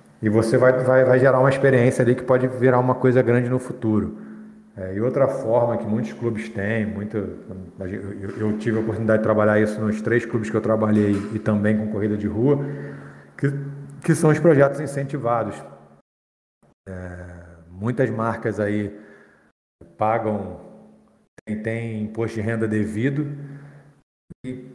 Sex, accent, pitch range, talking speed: male, Brazilian, 105-130 Hz, 155 wpm